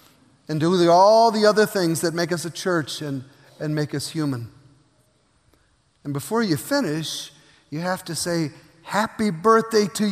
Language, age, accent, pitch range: English, 50-69, American, 150-210 Hz